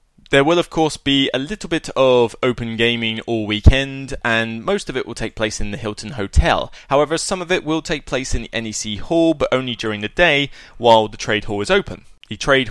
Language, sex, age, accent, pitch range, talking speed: English, male, 20-39, British, 105-135 Hz, 225 wpm